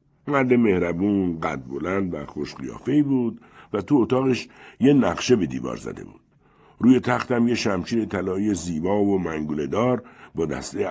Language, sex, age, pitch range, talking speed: Persian, male, 60-79, 85-125 Hz, 150 wpm